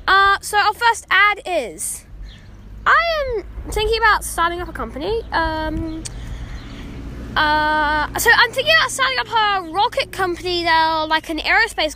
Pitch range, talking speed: 275-370 Hz, 145 wpm